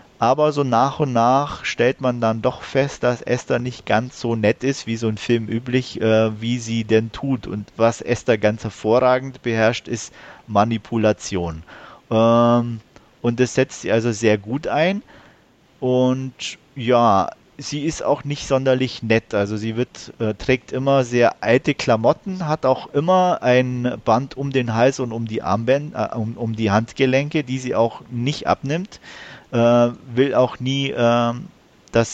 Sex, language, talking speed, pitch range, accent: male, German, 160 wpm, 115-130 Hz, German